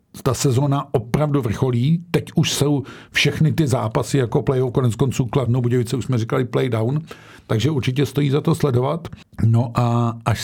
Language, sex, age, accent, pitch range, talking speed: Czech, male, 50-69, native, 110-125 Hz, 165 wpm